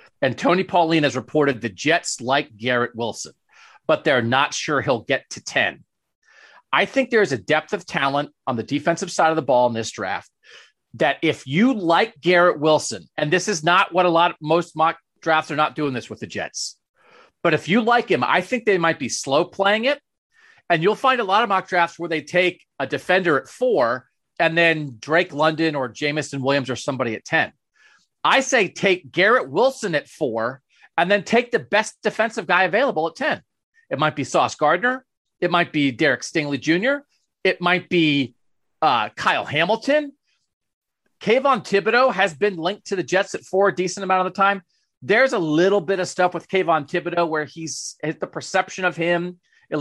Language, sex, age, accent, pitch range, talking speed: English, male, 40-59, American, 155-195 Hz, 200 wpm